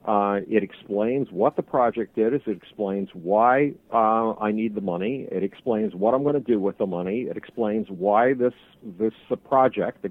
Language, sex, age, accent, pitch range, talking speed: English, male, 50-69, American, 105-130 Hz, 195 wpm